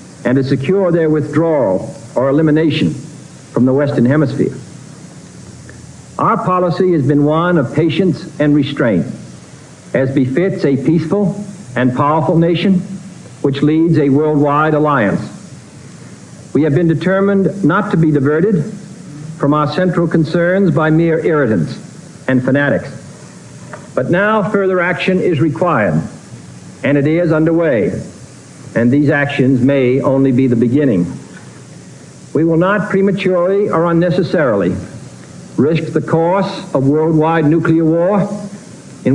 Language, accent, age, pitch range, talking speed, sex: English, American, 60-79, 145-180 Hz, 125 wpm, male